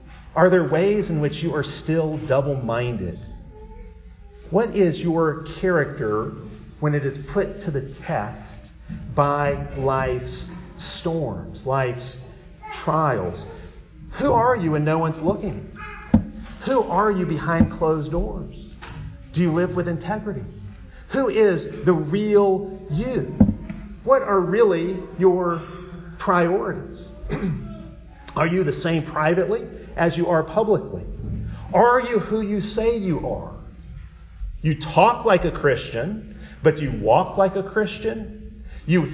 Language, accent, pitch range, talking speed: English, American, 145-190 Hz, 125 wpm